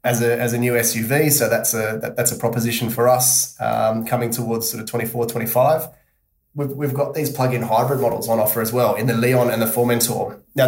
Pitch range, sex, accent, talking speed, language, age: 120-135 Hz, male, Australian, 235 wpm, English, 20-39